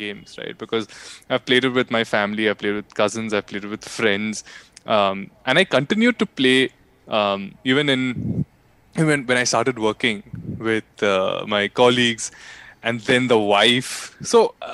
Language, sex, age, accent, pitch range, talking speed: English, male, 20-39, Indian, 110-145 Hz, 165 wpm